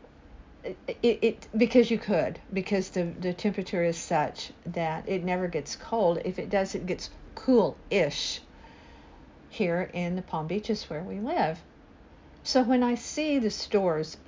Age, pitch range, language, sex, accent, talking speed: 50-69, 170-210 Hz, English, female, American, 155 wpm